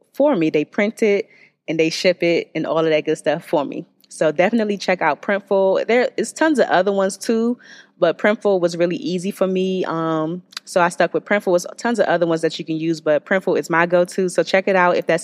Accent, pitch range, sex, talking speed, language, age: American, 170-195 Hz, female, 245 wpm, English, 20-39